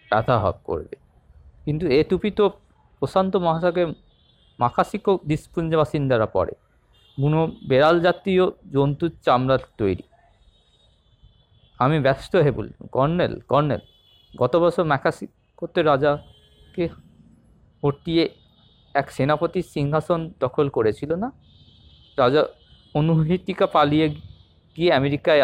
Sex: male